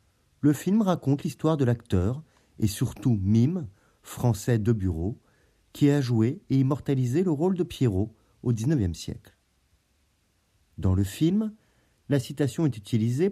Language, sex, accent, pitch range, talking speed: French, male, French, 100-145 Hz, 135 wpm